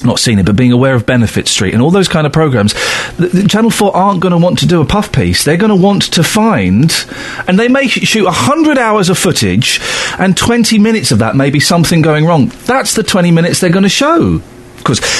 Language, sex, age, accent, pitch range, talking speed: English, male, 40-59, British, 115-165 Hz, 235 wpm